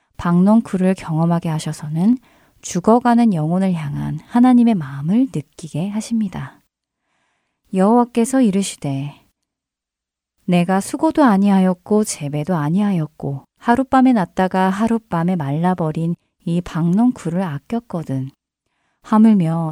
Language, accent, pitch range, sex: Korean, native, 160-230 Hz, female